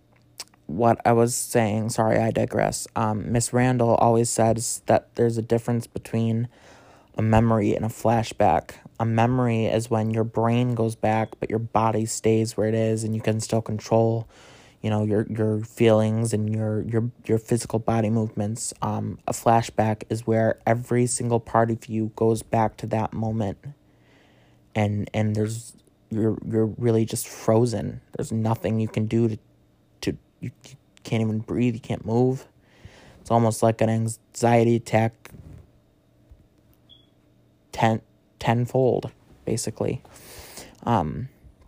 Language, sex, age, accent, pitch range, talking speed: English, male, 20-39, American, 105-115 Hz, 145 wpm